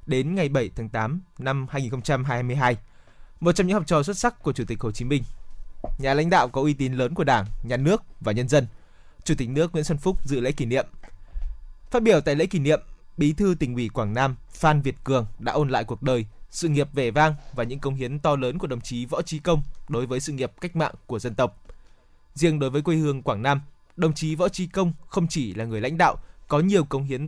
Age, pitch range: 20-39, 125-165 Hz